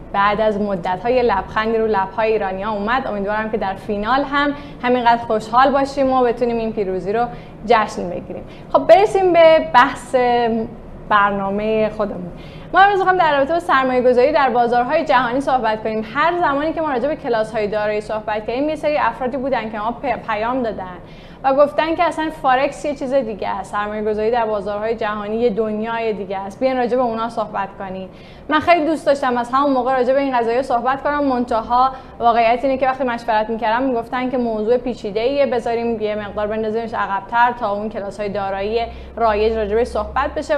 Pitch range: 215-265 Hz